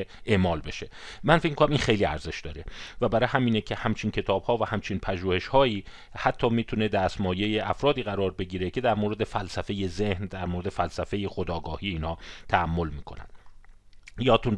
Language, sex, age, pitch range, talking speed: Persian, male, 40-59, 90-115 Hz, 160 wpm